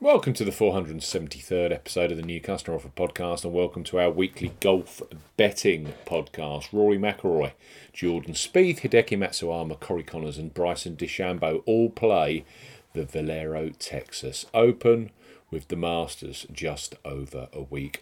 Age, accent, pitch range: 40-59, British, 85-105 Hz